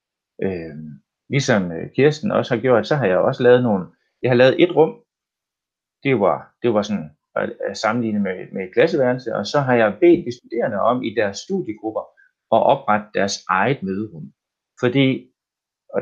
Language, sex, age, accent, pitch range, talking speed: Danish, male, 30-49, native, 105-145 Hz, 170 wpm